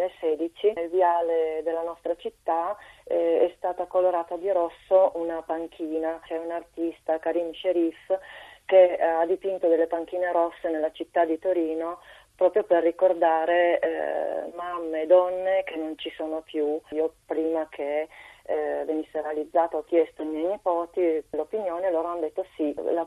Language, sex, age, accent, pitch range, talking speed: Italian, female, 30-49, native, 160-185 Hz, 150 wpm